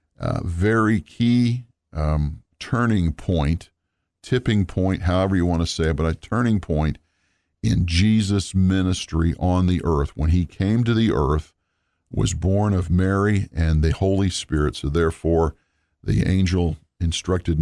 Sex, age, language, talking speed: male, 50-69, English, 145 wpm